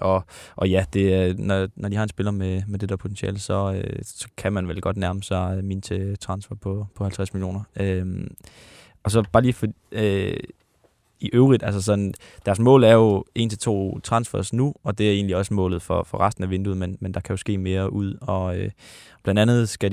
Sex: male